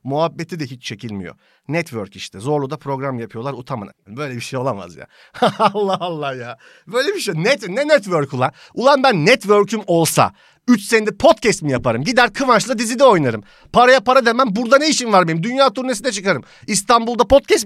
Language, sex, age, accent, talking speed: Turkish, male, 40-59, native, 175 wpm